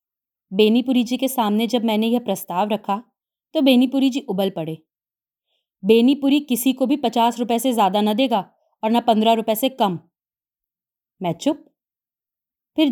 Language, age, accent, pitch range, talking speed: Hindi, 30-49, native, 200-265 Hz, 155 wpm